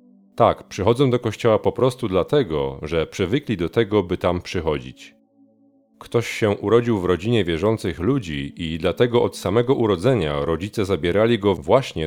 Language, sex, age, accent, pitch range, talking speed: Polish, male, 40-59, native, 85-115 Hz, 150 wpm